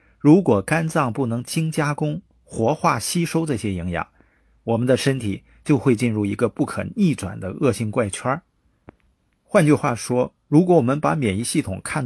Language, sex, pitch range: Chinese, male, 100-155 Hz